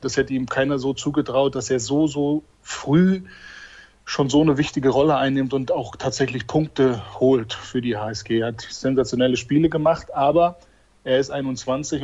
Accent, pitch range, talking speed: German, 125-145 Hz, 170 wpm